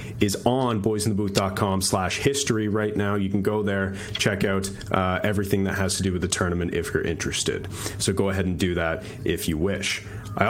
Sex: male